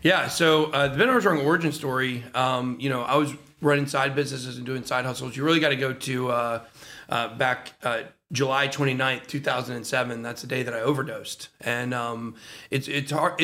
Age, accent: 40-59, American